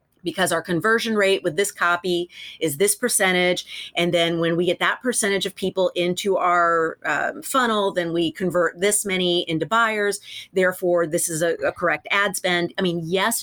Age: 30-49